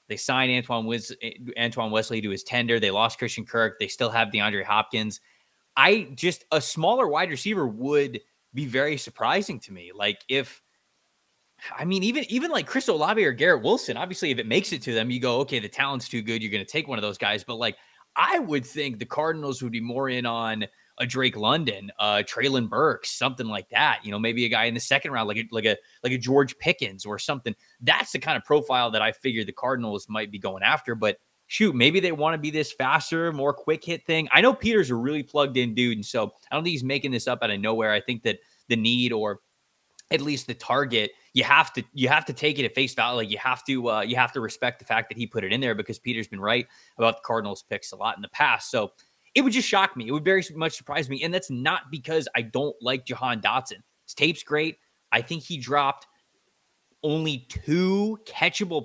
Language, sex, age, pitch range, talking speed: English, male, 20-39, 115-155 Hz, 235 wpm